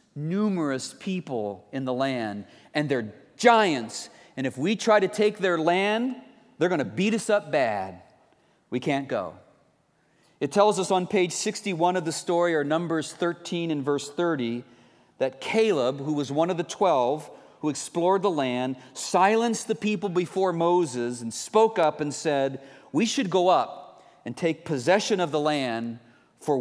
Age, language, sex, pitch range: 40-59, English, male, 130-185 Hz